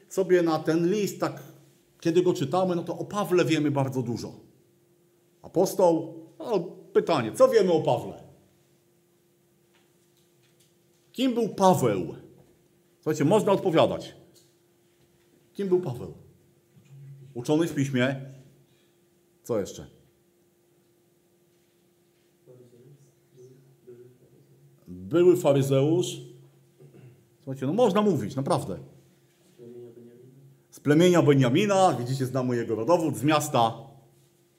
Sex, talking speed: male, 90 wpm